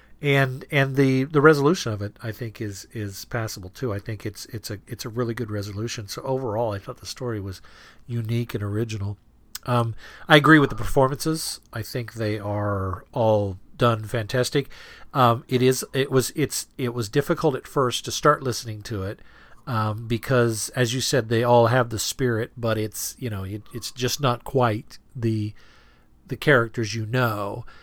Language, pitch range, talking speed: English, 110-125 Hz, 185 wpm